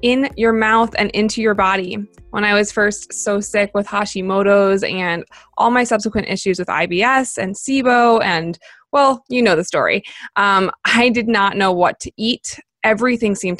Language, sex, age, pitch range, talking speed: English, female, 20-39, 190-230 Hz, 175 wpm